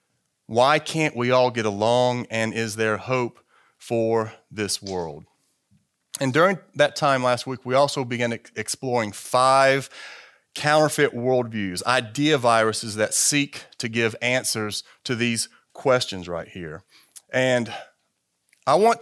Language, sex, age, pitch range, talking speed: English, male, 30-49, 115-150 Hz, 130 wpm